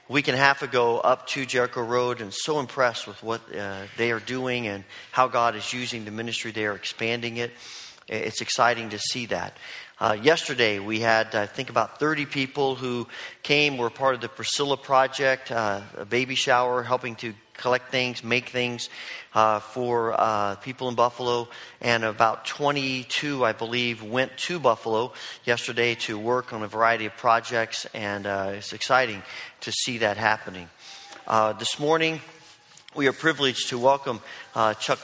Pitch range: 110-125 Hz